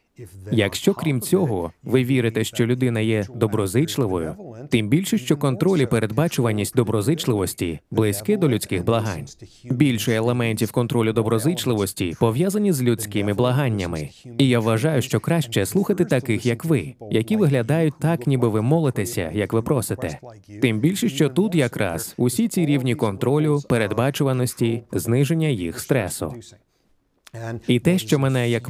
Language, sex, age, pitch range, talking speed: Ukrainian, male, 20-39, 110-150 Hz, 135 wpm